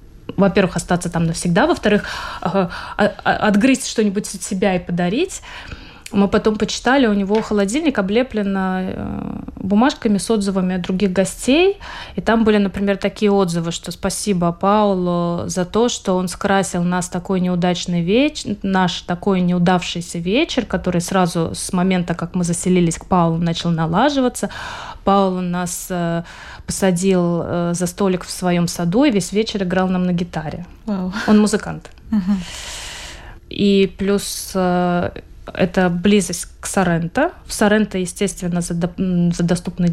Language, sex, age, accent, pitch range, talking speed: Russian, female, 20-39, native, 175-210 Hz, 130 wpm